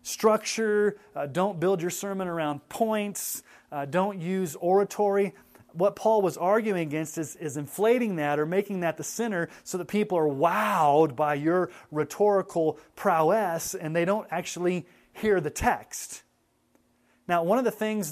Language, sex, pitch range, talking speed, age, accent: English, male, 150-195 Hz, 155 wpm, 30-49, American